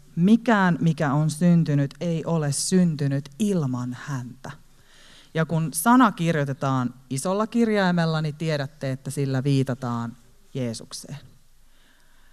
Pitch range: 135-185 Hz